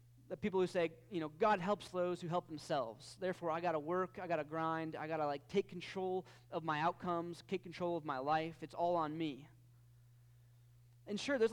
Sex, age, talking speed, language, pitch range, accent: male, 20-39, 205 wpm, English, 120-185 Hz, American